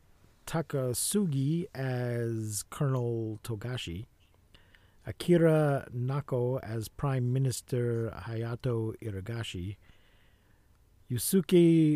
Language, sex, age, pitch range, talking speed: English, male, 50-69, 100-135 Hz, 60 wpm